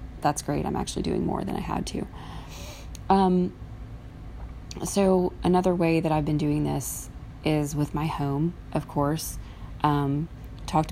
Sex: female